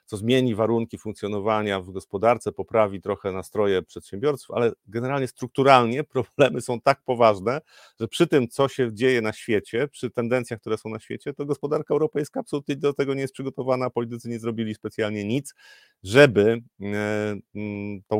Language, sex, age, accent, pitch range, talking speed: Polish, male, 40-59, native, 95-120 Hz, 155 wpm